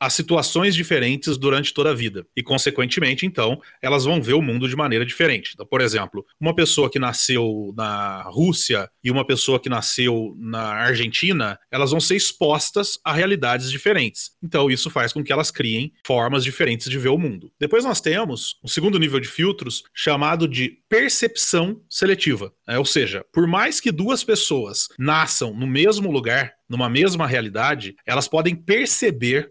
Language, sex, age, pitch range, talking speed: Portuguese, male, 30-49, 130-175 Hz, 165 wpm